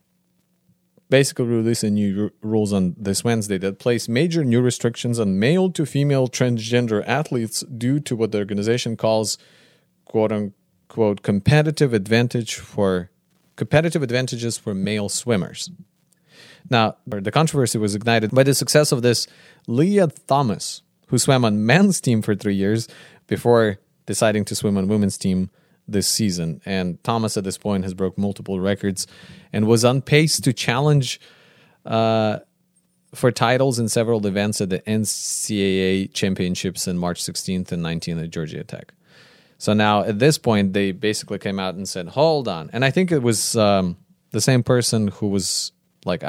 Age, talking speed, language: 30-49, 150 wpm, English